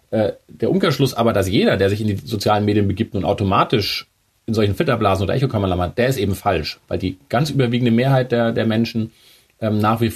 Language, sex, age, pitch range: German, male, 30-49, 100-120 Hz